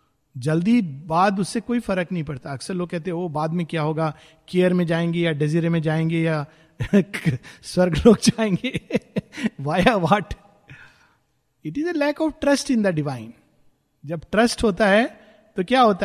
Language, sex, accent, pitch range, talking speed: Hindi, male, native, 160-205 Hz, 145 wpm